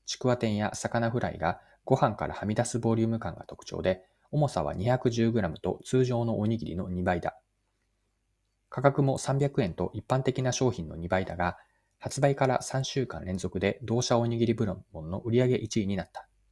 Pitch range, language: 95-130 Hz, Japanese